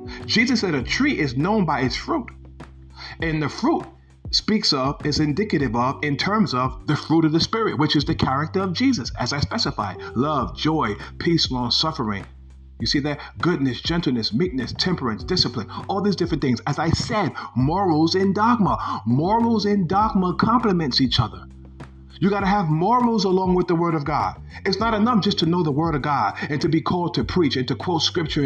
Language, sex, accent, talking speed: English, male, American, 195 wpm